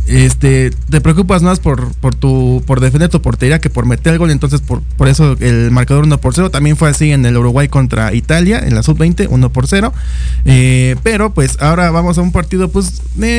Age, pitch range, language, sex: 20-39, 130-175 Hz, Spanish, male